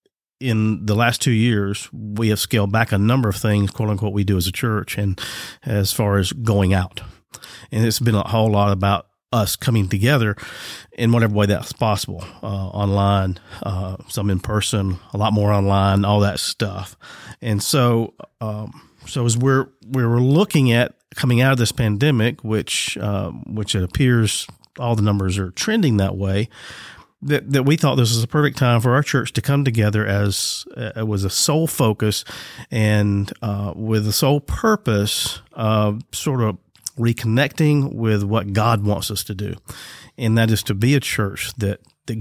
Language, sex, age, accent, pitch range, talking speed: English, male, 40-59, American, 100-120 Hz, 185 wpm